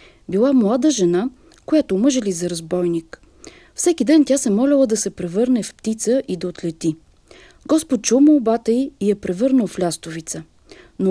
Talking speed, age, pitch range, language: 160 wpm, 40-59, 195-275 Hz, Bulgarian